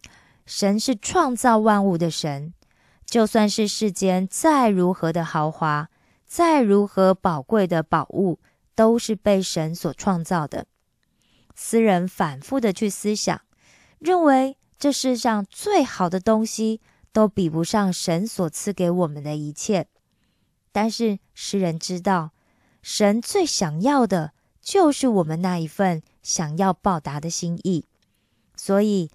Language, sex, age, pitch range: Korean, female, 20-39, 170-225 Hz